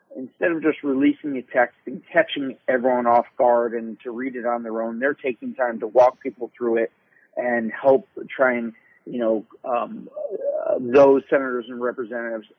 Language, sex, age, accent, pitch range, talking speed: English, male, 40-59, American, 115-135 Hz, 180 wpm